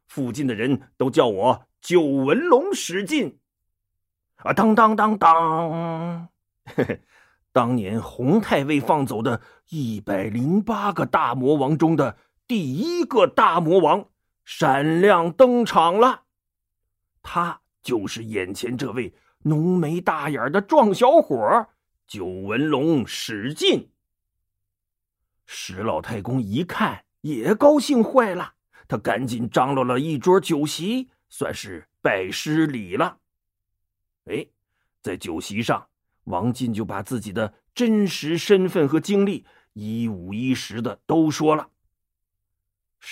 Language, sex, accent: Chinese, male, native